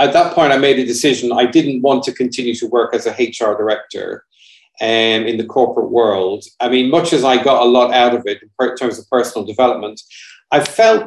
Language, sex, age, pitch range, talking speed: English, male, 40-59, 120-150 Hz, 220 wpm